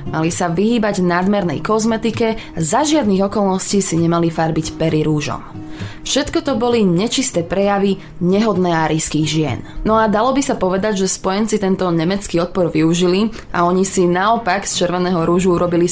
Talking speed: 155 wpm